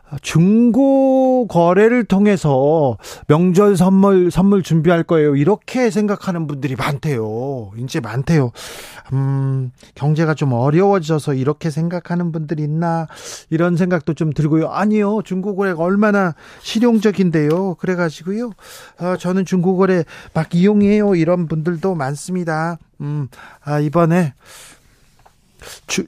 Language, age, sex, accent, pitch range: Korean, 40-59, male, native, 145-185 Hz